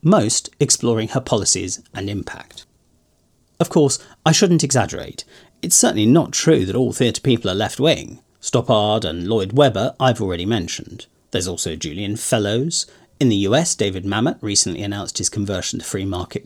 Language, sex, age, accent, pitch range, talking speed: English, male, 40-59, British, 100-135 Hz, 160 wpm